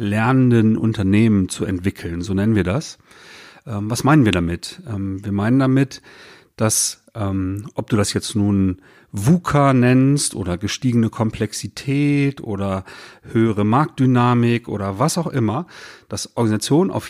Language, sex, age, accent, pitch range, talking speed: German, male, 40-59, German, 110-150 Hz, 125 wpm